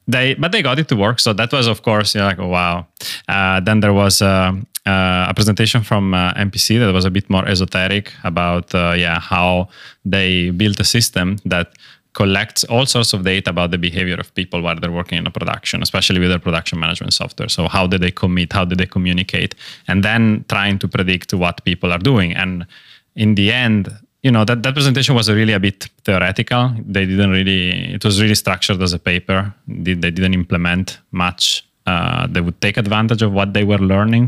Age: 20-39